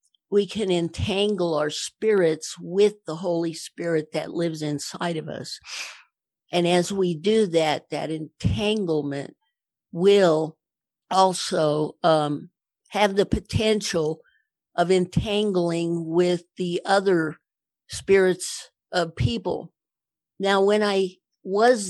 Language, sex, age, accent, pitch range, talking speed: English, female, 50-69, American, 160-195 Hz, 105 wpm